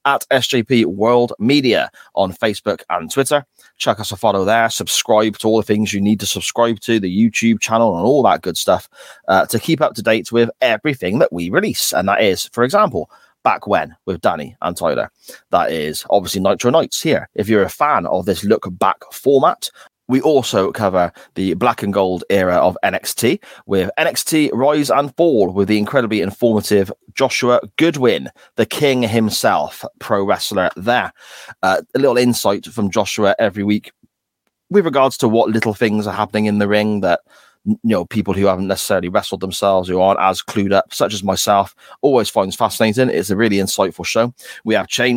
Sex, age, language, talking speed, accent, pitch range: male, 30-49, English, 185 wpm, British, 100-125 Hz